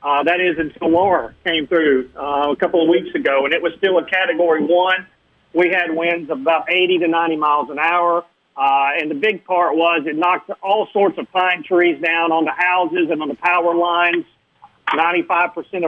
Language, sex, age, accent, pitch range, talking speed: English, male, 40-59, American, 160-185 Hz, 205 wpm